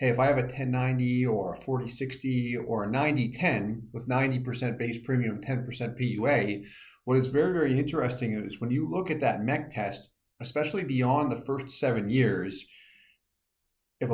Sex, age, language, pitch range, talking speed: male, 40-59, English, 115-145 Hz, 160 wpm